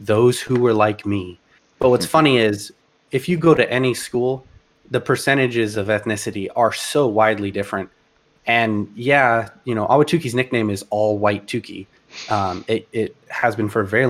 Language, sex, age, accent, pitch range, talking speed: English, male, 20-39, American, 105-130 Hz, 175 wpm